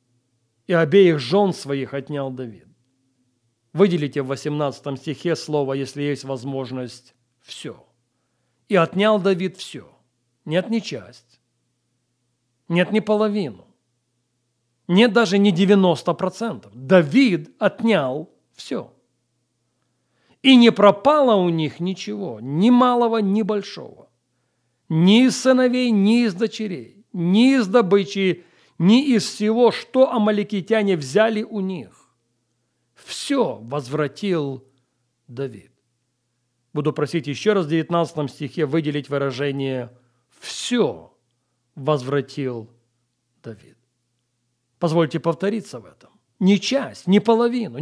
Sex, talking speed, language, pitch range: male, 105 wpm, Russian, 125-200 Hz